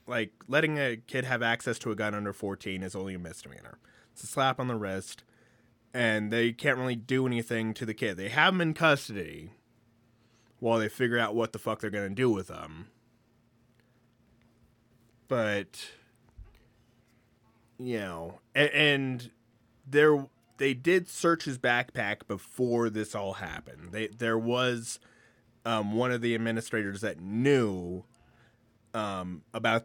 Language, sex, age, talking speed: English, male, 20-39, 150 wpm